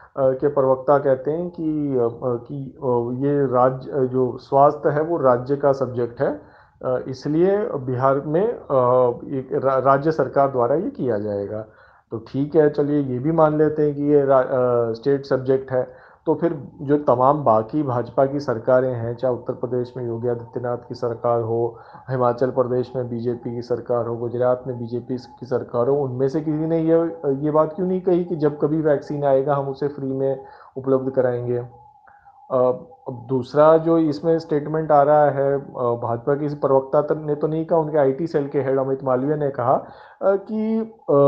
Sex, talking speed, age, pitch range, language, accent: male, 170 wpm, 40-59, 130-160 Hz, Hindi, native